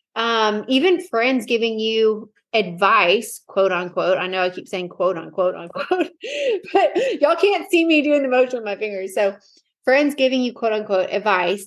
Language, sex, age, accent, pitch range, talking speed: English, female, 20-39, American, 205-255 Hz, 175 wpm